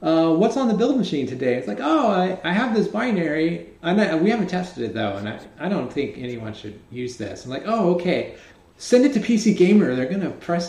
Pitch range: 115-160 Hz